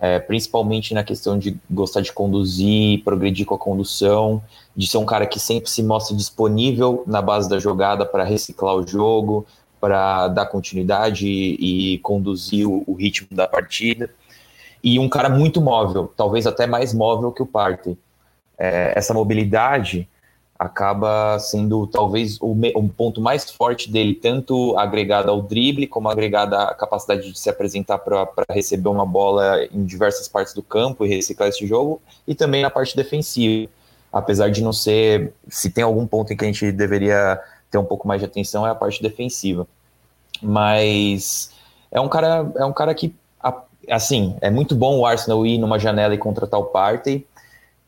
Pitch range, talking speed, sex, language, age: 100-115 Hz, 165 wpm, male, Portuguese, 20-39